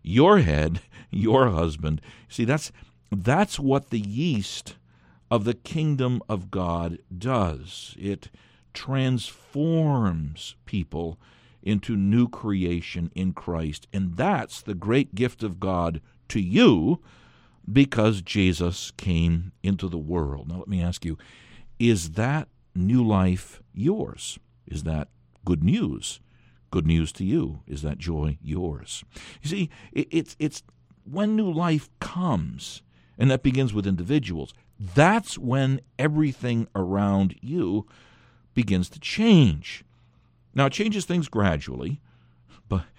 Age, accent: 60-79, American